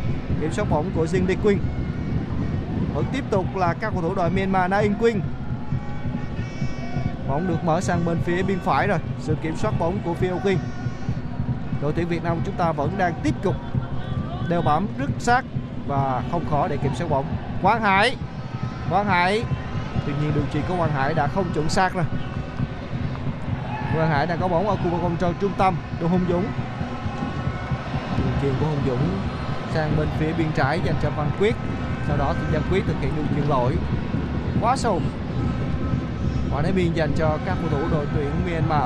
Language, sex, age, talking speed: Vietnamese, male, 20-39, 185 wpm